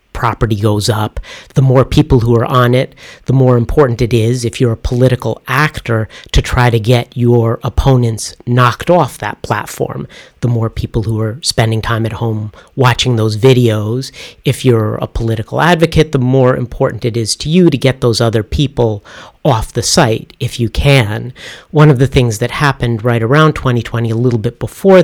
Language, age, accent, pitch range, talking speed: English, 40-59, American, 115-130 Hz, 185 wpm